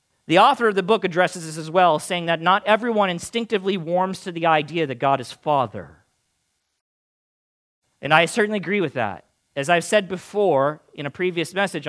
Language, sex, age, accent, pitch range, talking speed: English, male, 40-59, American, 120-165 Hz, 180 wpm